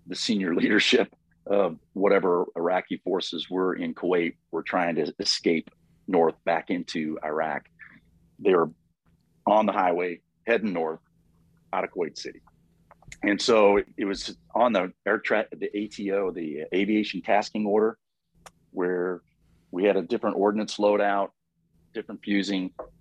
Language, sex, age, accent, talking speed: English, male, 40-59, American, 135 wpm